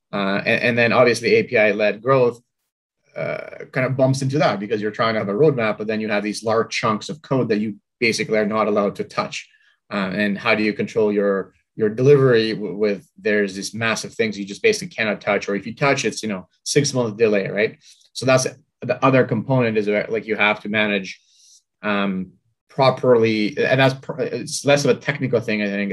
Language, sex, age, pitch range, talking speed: English, male, 30-49, 105-135 Hz, 210 wpm